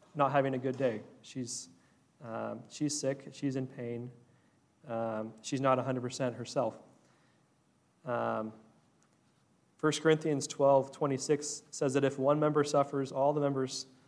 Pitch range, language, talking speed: 125-145 Hz, English, 130 wpm